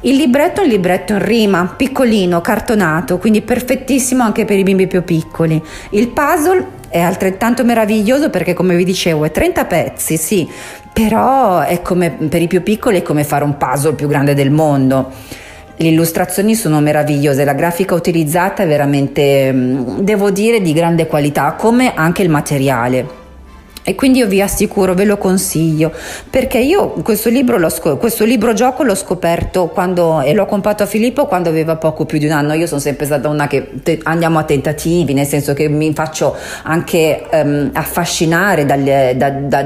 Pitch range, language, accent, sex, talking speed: 145-200 Hz, Italian, native, female, 175 wpm